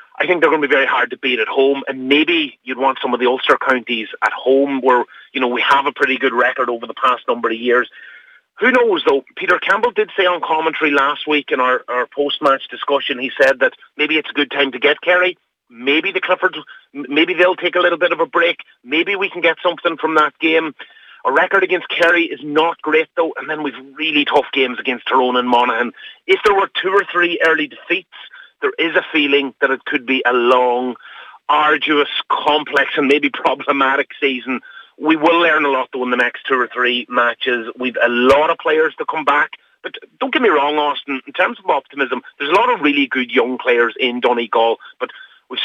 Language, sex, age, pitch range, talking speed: English, male, 30-49, 130-175 Hz, 225 wpm